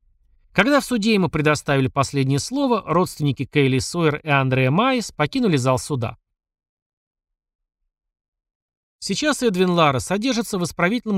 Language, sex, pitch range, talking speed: Russian, male, 135-190 Hz, 120 wpm